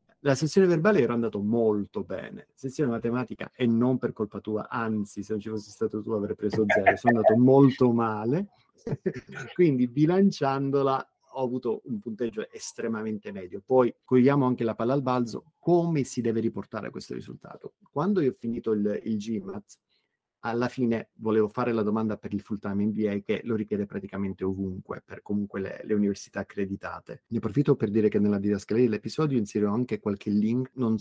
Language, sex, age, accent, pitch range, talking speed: Italian, male, 30-49, native, 105-130 Hz, 175 wpm